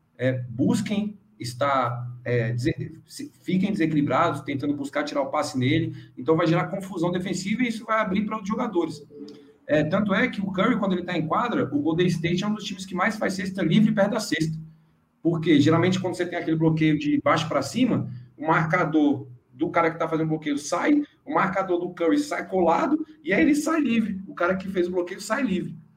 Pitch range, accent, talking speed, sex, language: 145-190 Hz, Brazilian, 210 wpm, male, Portuguese